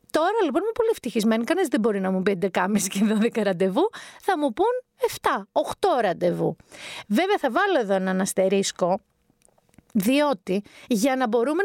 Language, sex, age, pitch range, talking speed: Greek, female, 30-49, 215-305 Hz, 160 wpm